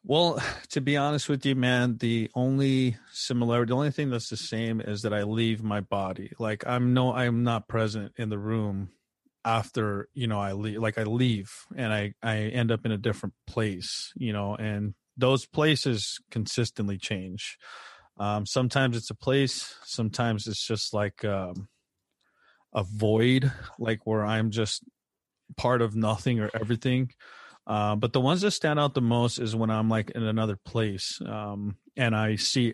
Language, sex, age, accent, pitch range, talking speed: English, male, 30-49, American, 105-125 Hz, 175 wpm